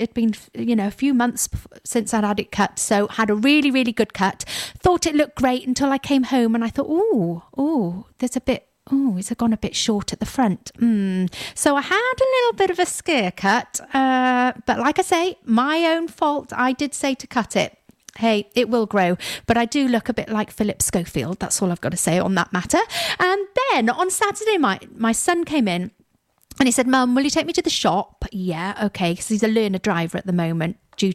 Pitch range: 195-280 Hz